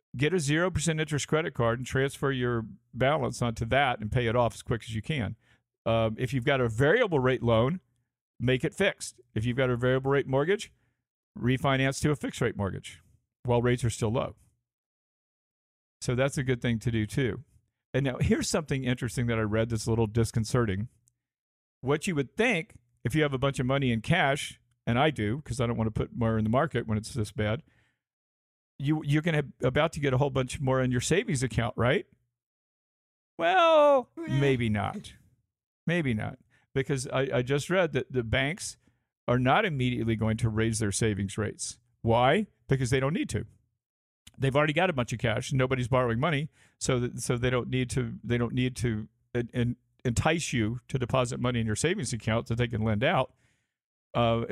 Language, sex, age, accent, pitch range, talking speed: English, male, 50-69, American, 115-140 Hz, 205 wpm